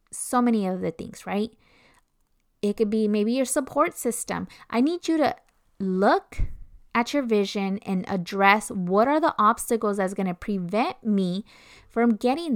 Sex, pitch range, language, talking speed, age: female, 195-240 Hz, English, 160 wpm, 20-39